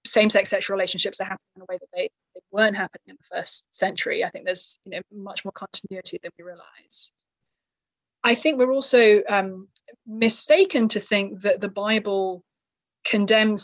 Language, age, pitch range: English, 20-39, 190-220 Hz